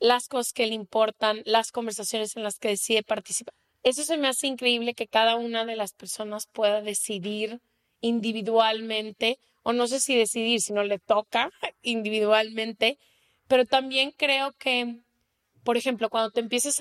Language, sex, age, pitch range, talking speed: Spanish, female, 20-39, 220-255 Hz, 160 wpm